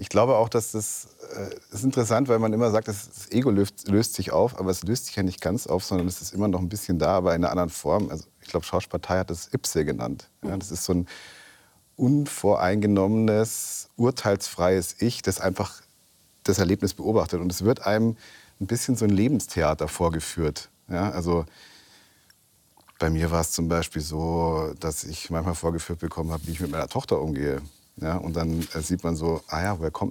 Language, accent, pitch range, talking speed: German, German, 85-105 Hz, 195 wpm